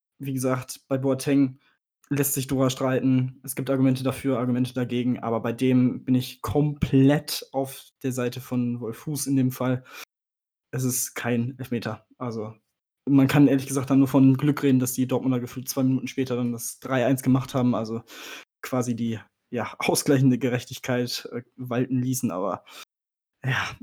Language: German